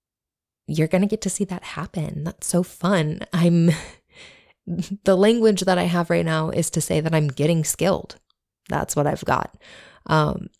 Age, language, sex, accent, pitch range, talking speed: 20-39, English, female, American, 145-175 Hz, 175 wpm